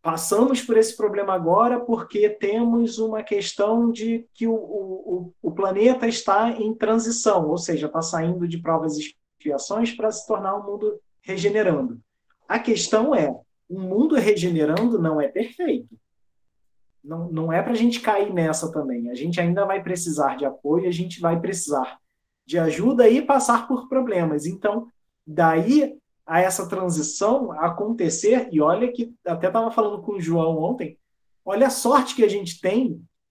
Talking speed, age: 160 wpm, 20-39